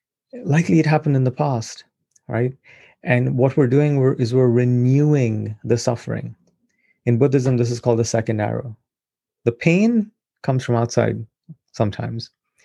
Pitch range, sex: 115-140 Hz, male